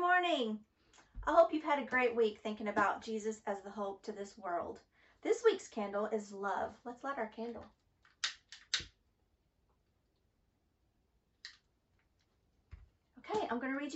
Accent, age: American, 40-59